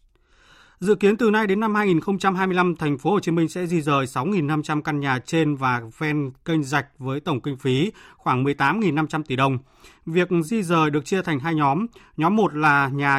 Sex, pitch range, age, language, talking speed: male, 140-180 Hz, 20-39, Vietnamese, 190 wpm